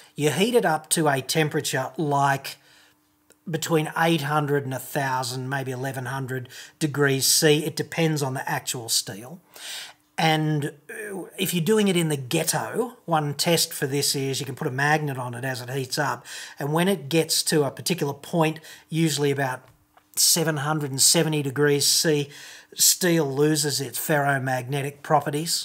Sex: male